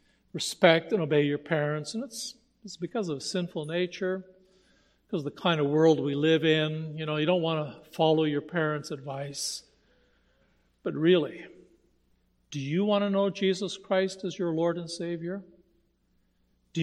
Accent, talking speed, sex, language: American, 170 wpm, male, English